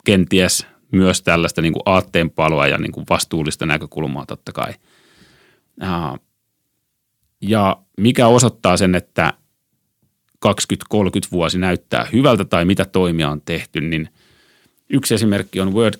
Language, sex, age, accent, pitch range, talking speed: Finnish, male, 30-49, native, 85-105 Hz, 105 wpm